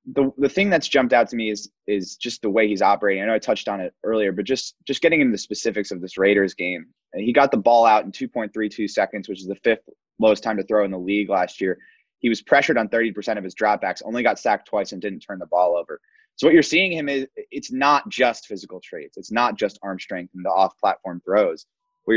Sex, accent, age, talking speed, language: male, American, 20-39, 255 wpm, English